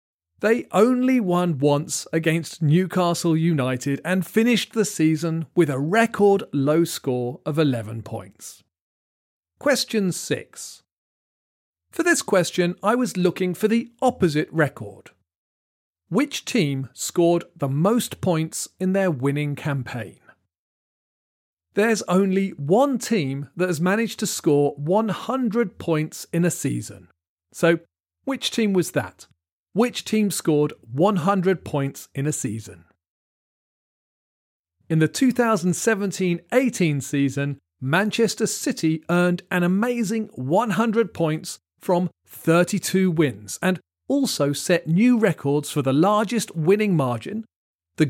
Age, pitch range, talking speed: 40-59, 135-200 Hz, 115 wpm